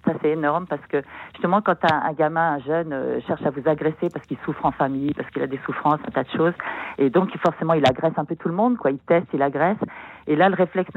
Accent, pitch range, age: French, 150-185 Hz, 50-69